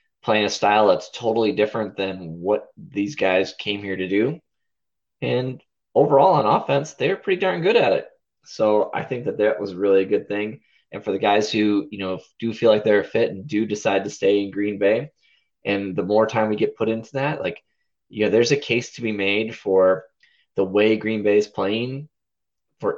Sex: male